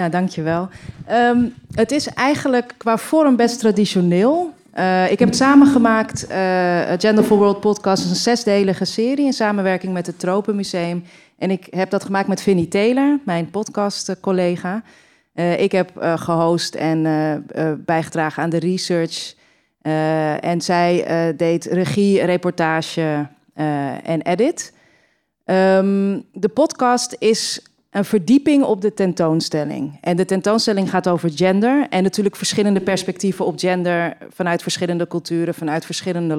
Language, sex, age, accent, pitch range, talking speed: Dutch, female, 30-49, Dutch, 175-210 Hz, 145 wpm